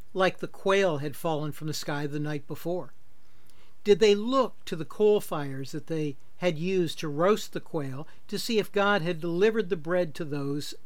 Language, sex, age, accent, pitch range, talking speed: English, male, 60-79, American, 145-205 Hz, 200 wpm